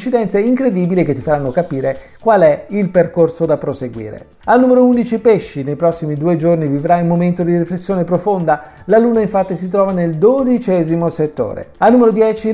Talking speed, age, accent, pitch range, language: 175 wpm, 40-59, native, 155-215 Hz, Italian